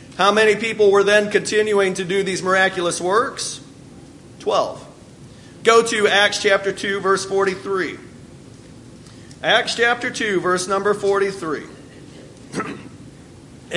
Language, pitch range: English, 175-230 Hz